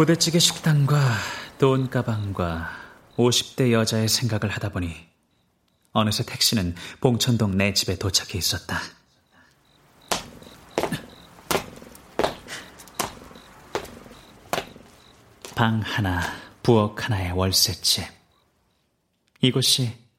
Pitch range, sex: 95-125 Hz, male